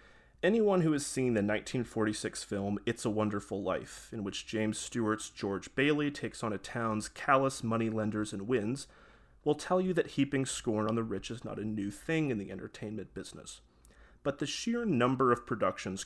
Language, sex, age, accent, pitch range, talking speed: English, male, 30-49, American, 105-125 Hz, 185 wpm